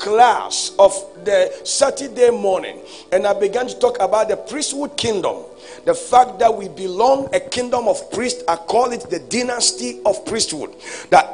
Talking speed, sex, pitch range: 165 wpm, male, 215-275 Hz